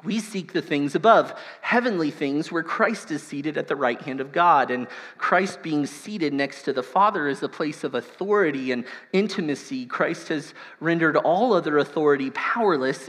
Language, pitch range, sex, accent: English, 140-195 Hz, male, American